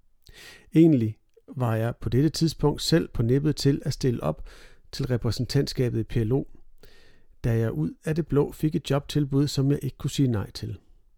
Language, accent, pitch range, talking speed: Danish, native, 115-145 Hz, 175 wpm